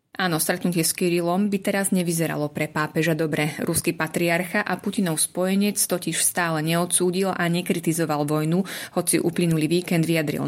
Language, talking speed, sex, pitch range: Slovak, 145 wpm, female, 160-180 Hz